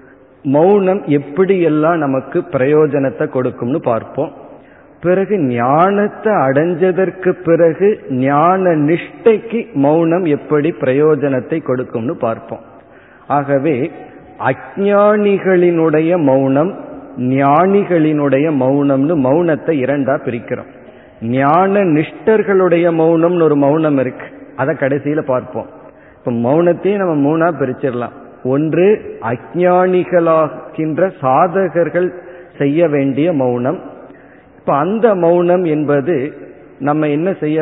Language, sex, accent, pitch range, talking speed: Tamil, male, native, 135-175 Hz, 80 wpm